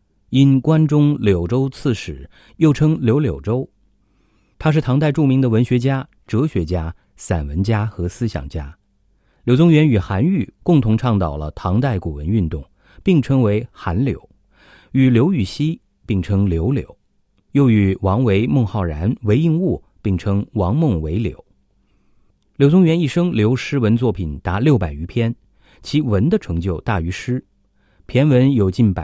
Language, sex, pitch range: English, male, 95-130 Hz